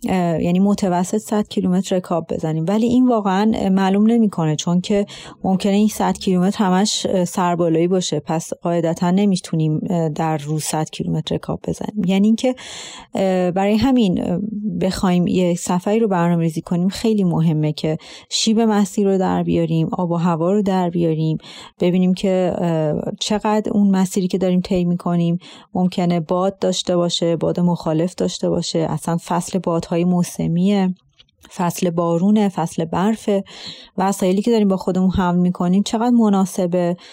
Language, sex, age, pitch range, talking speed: Persian, female, 30-49, 170-205 Hz, 140 wpm